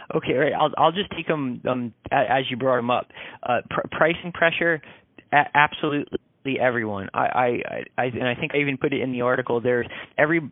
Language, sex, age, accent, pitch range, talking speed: English, male, 30-49, American, 115-145 Hz, 200 wpm